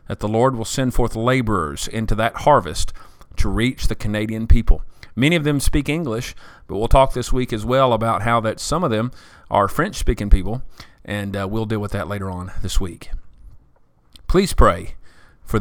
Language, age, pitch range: English, 40-59, 105-150 Hz